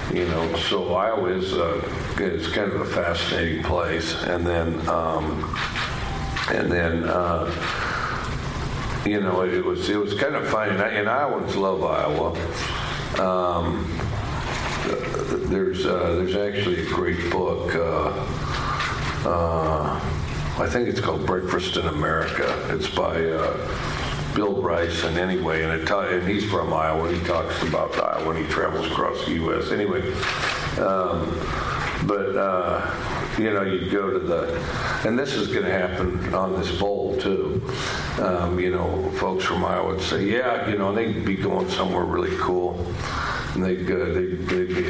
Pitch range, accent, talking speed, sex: 85-95 Hz, American, 150 wpm, male